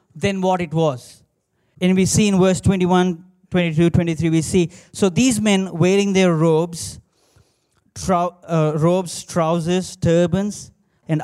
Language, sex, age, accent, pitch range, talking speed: English, male, 20-39, Indian, 160-185 Hz, 135 wpm